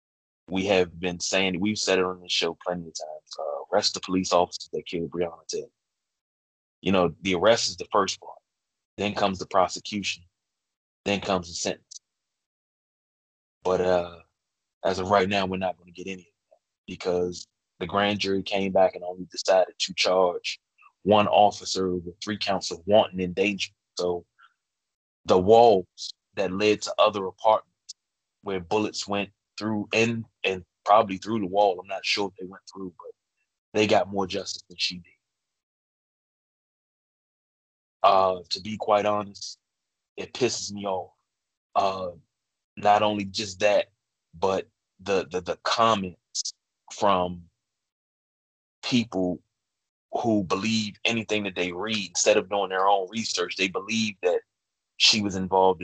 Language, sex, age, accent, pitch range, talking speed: English, male, 20-39, American, 90-105 Hz, 155 wpm